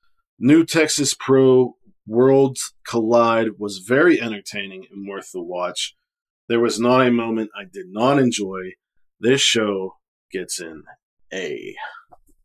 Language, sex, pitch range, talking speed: English, male, 110-135 Hz, 125 wpm